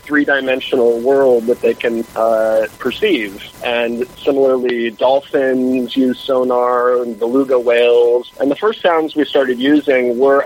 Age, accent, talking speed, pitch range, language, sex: 40-59, American, 130 wpm, 120-140 Hz, English, male